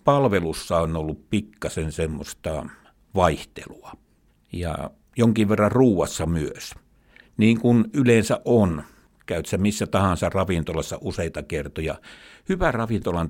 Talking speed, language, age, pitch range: 110 wpm, Finnish, 60-79, 85-105 Hz